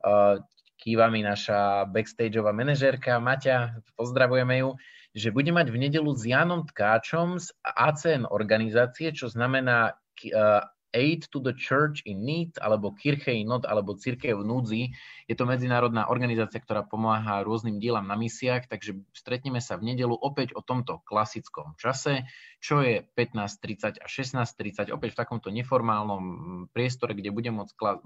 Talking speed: 150 wpm